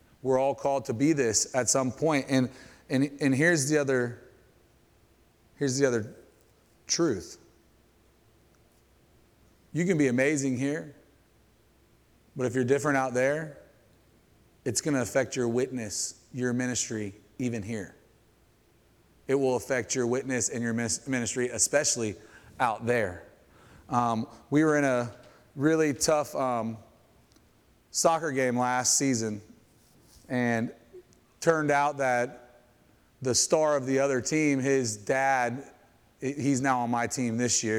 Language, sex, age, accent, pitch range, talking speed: English, male, 30-49, American, 115-140 Hz, 130 wpm